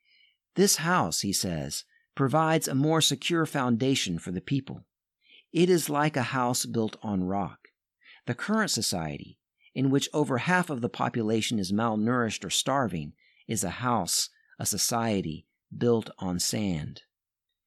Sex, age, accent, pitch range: male, 50-69, American, 115-150 Hz